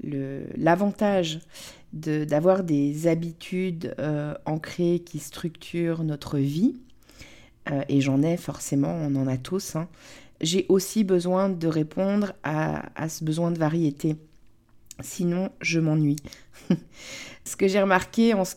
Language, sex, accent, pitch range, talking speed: French, female, French, 150-185 Hz, 135 wpm